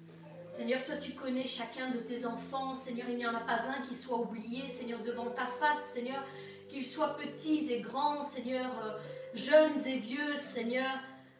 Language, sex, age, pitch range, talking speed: French, female, 40-59, 235-295 Hz, 180 wpm